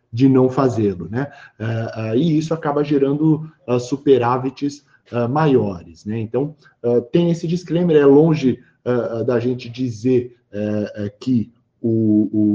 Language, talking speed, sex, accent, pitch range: Portuguese, 105 wpm, male, Brazilian, 120-160 Hz